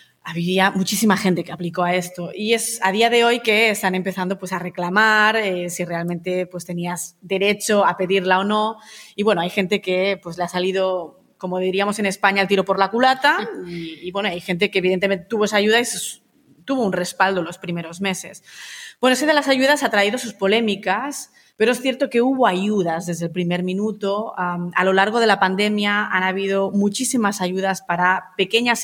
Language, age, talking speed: Spanish, 20-39, 200 wpm